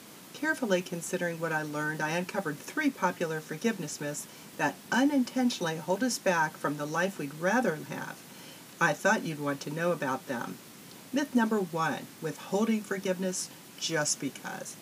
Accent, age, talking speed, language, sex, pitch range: American, 50-69, 150 wpm, English, female, 165-235 Hz